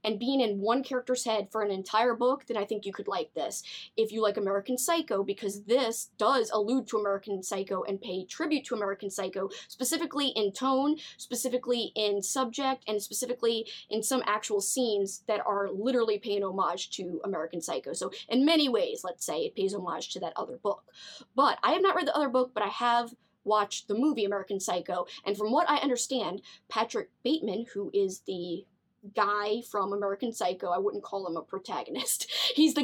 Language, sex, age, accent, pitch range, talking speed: English, female, 20-39, American, 200-265 Hz, 195 wpm